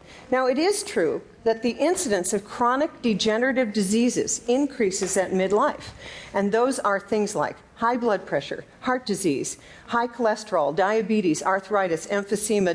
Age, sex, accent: 50-69, female, American